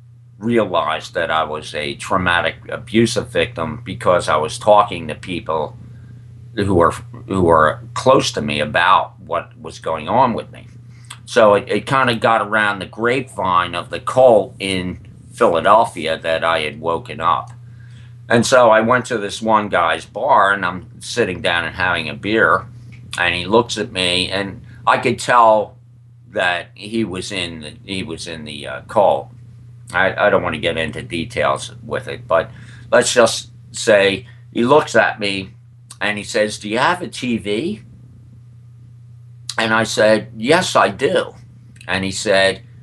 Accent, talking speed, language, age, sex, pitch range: American, 165 wpm, English, 50-69, male, 105-120 Hz